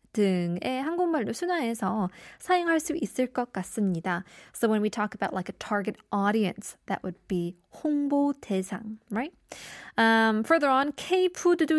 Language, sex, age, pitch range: Korean, female, 20-39, 200-300 Hz